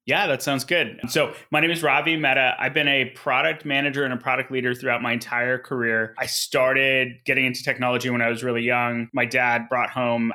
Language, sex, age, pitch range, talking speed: English, male, 20-39, 115-130 Hz, 215 wpm